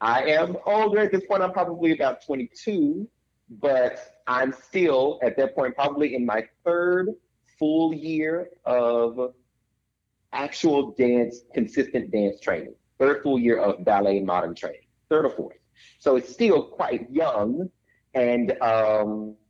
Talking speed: 140 wpm